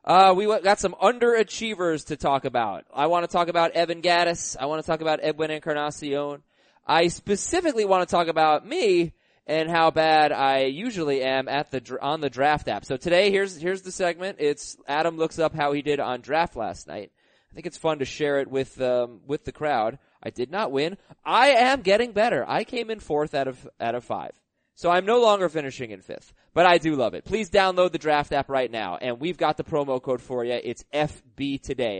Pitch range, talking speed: 140-180 Hz, 220 wpm